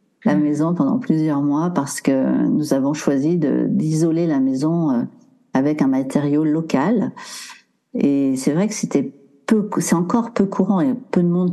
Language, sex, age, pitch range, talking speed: French, female, 50-69, 150-255 Hz, 165 wpm